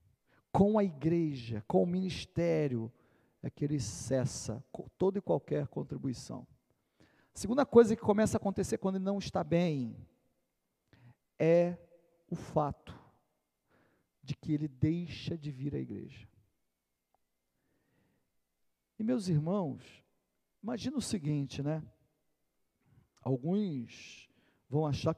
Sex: male